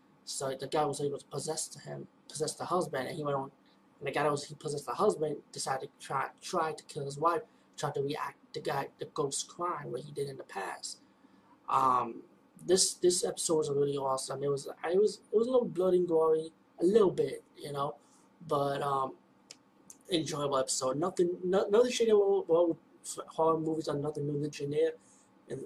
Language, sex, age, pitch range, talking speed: English, male, 20-39, 140-170 Hz, 205 wpm